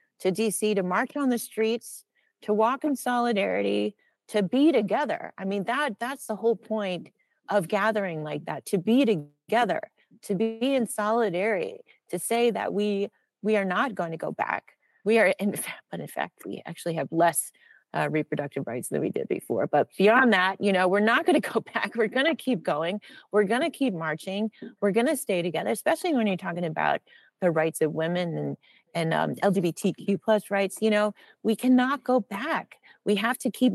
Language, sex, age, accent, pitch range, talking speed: English, female, 30-49, American, 190-240 Hz, 195 wpm